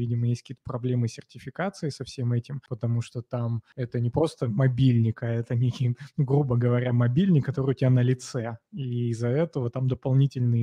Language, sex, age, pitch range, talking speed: Russian, male, 20-39, 120-135 Hz, 180 wpm